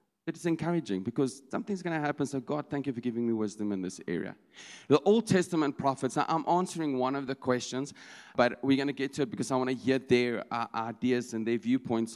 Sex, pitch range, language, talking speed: male, 120-165 Hz, English, 225 wpm